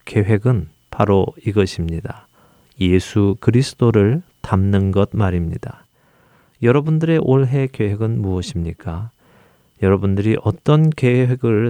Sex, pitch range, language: male, 100-130 Hz, Korean